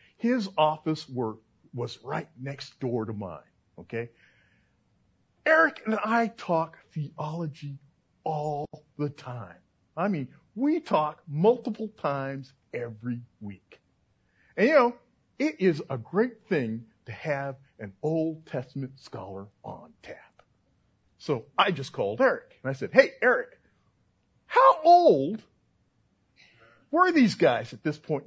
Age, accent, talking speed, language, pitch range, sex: 50-69, American, 125 wpm, English, 120-160 Hz, male